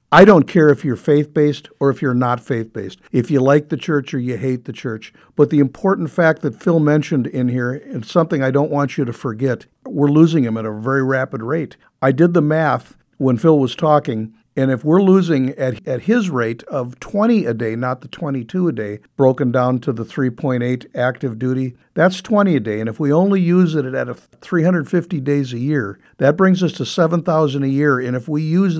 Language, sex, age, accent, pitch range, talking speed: English, male, 60-79, American, 125-155 Hz, 215 wpm